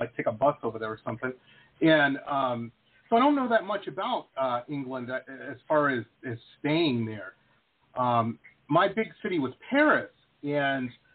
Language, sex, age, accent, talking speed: English, male, 40-59, American, 170 wpm